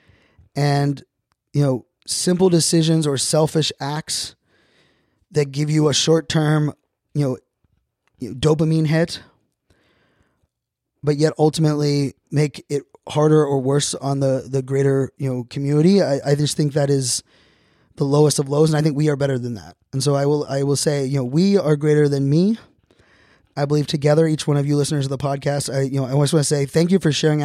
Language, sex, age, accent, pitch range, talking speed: English, male, 20-39, American, 135-155 Hz, 190 wpm